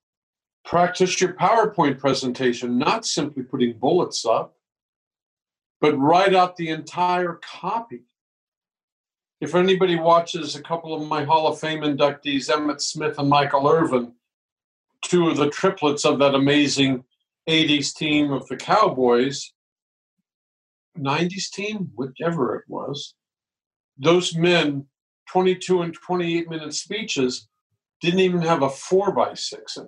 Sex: male